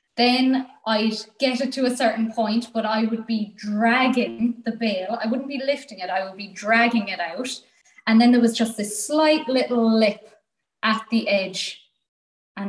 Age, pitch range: 20-39, 200-230 Hz